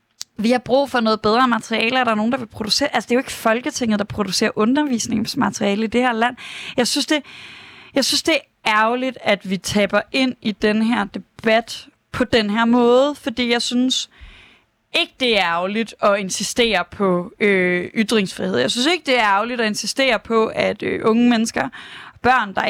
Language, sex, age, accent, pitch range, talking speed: Danish, female, 20-39, native, 210-255 Hz, 195 wpm